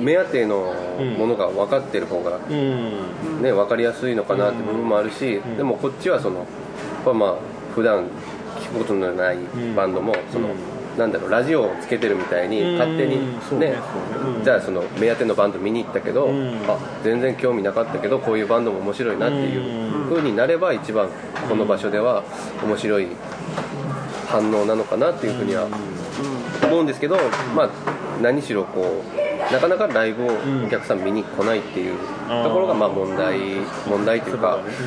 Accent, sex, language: native, male, Japanese